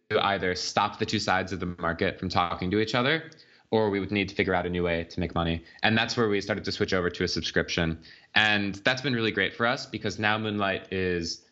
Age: 20-39